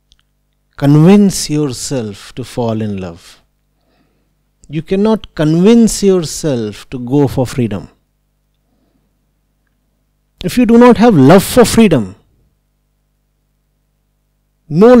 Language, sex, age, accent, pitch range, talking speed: English, male, 50-69, Indian, 145-230 Hz, 90 wpm